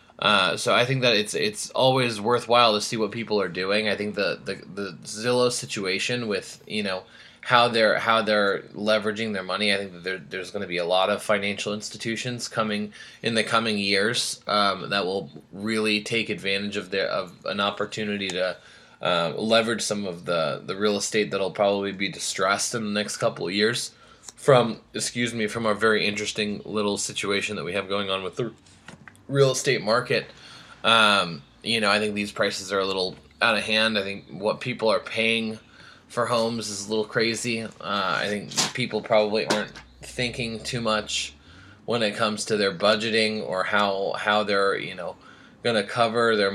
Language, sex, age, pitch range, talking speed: English, male, 20-39, 100-115 Hz, 190 wpm